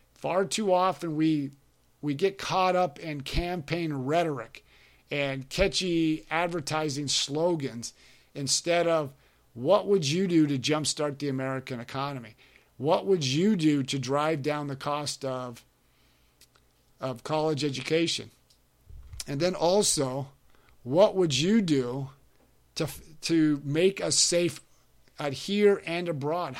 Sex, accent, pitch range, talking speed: male, American, 140-180 Hz, 125 wpm